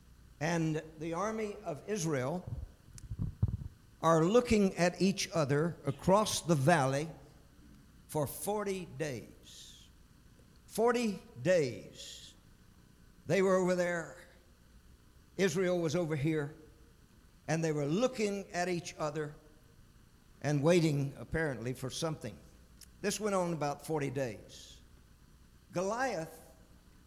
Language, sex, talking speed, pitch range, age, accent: English, male, 100 wpm, 125-195 Hz, 50-69, American